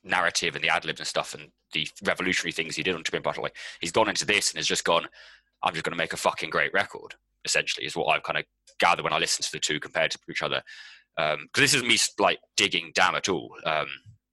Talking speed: 255 wpm